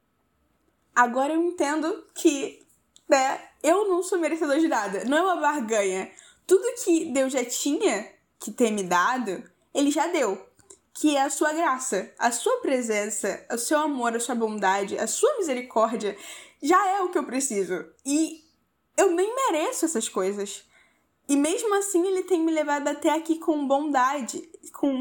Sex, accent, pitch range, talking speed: female, Brazilian, 235-325 Hz, 165 wpm